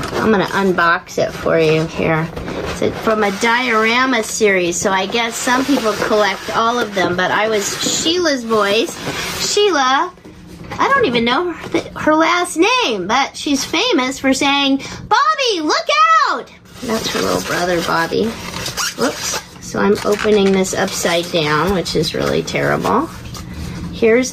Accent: American